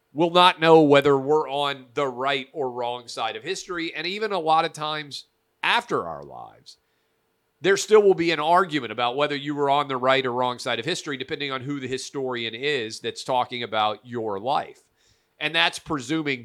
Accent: American